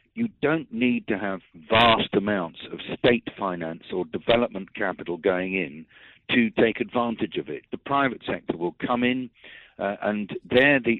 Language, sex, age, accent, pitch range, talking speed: English, male, 50-69, British, 95-120 Hz, 165 wpm